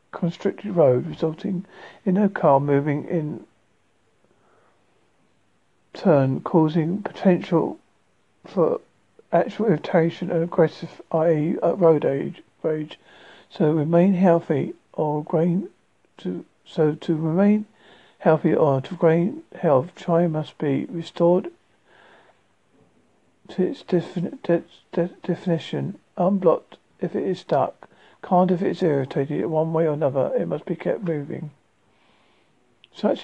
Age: 50-69